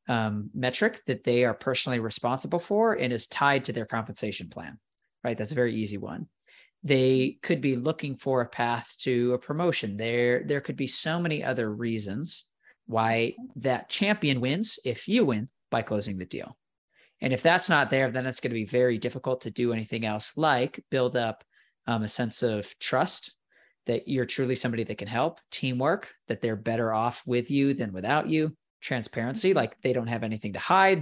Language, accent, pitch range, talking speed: English, American, 115-140 Hz, 190 wpm